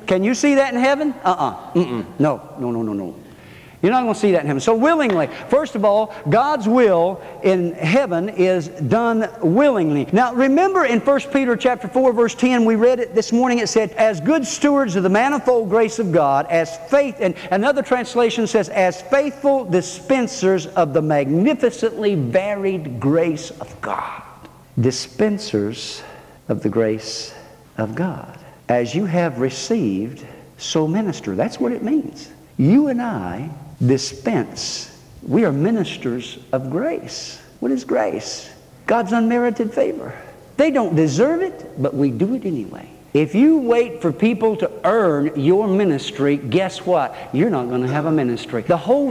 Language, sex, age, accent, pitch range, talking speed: English, male, 50-69, American, 155-250 Hz, 165 wpm